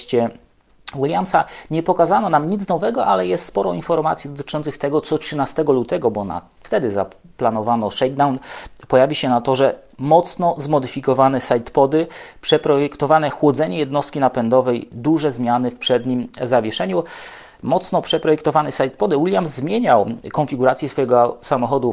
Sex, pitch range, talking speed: male, 120-150 Hz, 125 wpm